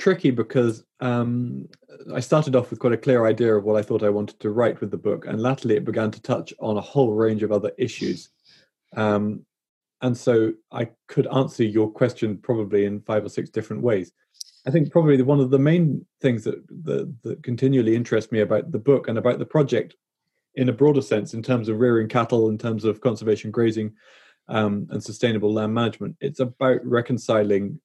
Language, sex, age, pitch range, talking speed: English, male, 20-39, 110-130 Hz, 200 wpm